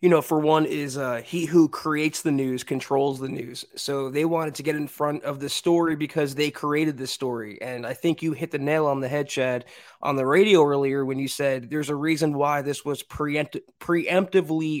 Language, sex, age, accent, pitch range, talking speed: English, male, 20-39, American, 140-165 Hz, 220 wpm